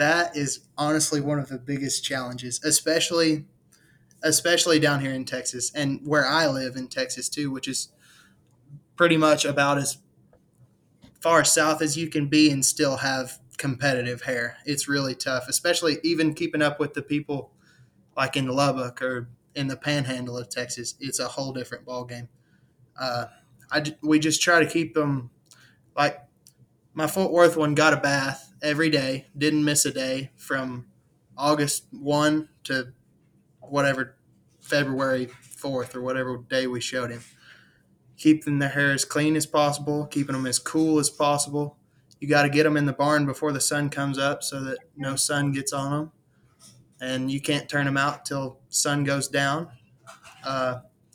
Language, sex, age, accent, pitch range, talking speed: English, male, 20-39, American, 130-150 Hz, 165 wpm